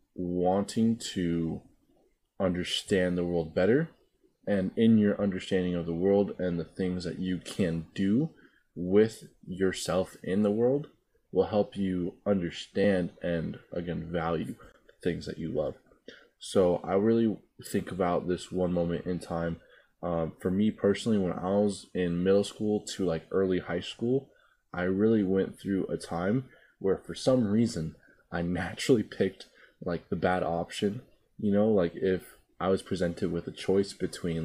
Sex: male